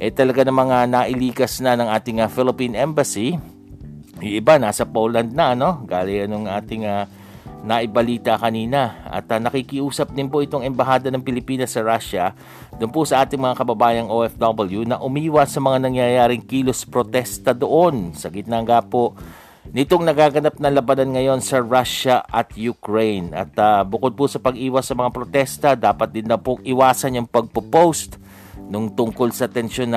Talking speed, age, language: 165 wpm, 50-69, Filipino